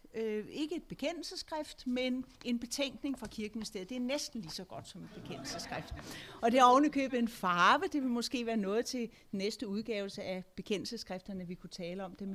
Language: Danish